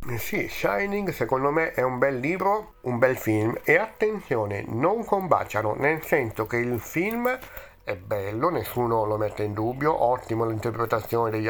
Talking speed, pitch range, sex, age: 155 wpm, 110-130 Hz, male, 50-69